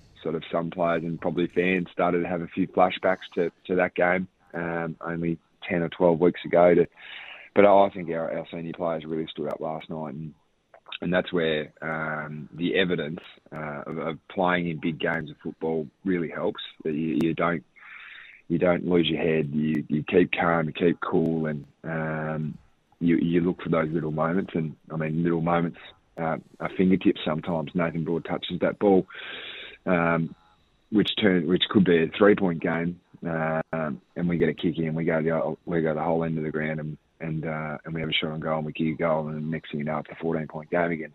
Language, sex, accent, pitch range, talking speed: English, male, Australian, 80-90 Hz, 215 wpm